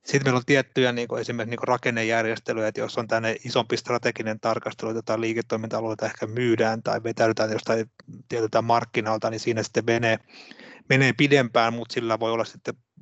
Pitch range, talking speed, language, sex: 115-130 Hz, 155 wpm, Finnish, male